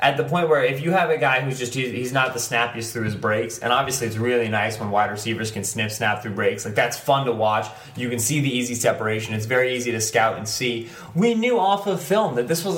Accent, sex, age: American, male, 20-39